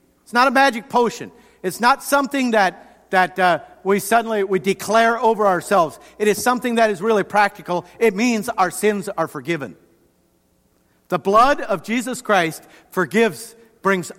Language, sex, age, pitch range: English, male, 50-69, 160-220 Hz